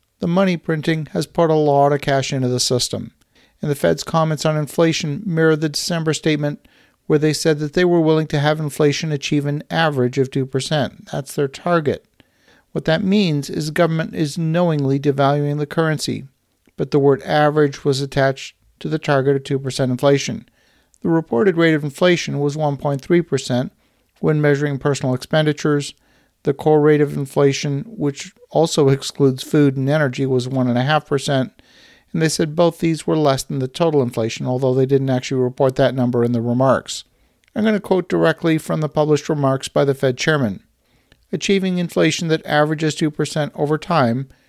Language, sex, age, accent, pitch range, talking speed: English, male, 50-69, American, 135-160 Hz, 170 wpm